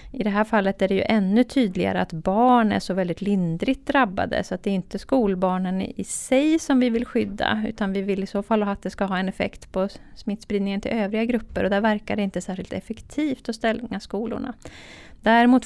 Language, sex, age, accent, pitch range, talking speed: Swedish, female, 30-49, native, 190-225 Hz, 215 wpm